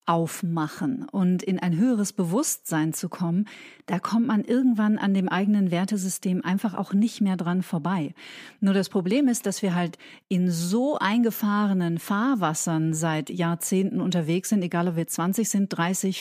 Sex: female